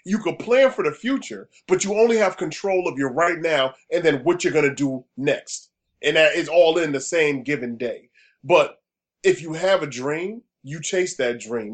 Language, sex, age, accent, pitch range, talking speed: English, male, 30-49, American, 155-205 Hz, 215 wpm